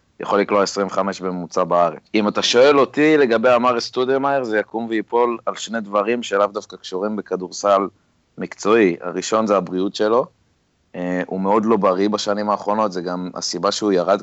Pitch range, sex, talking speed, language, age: 95-115 Hz, male, 165 wpm, Hebrew, 30-49